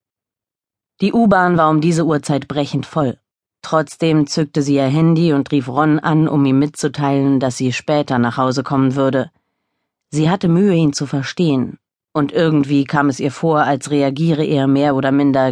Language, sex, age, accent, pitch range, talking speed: German, female, 30-49, German, 135-170 Hz, 175 wpm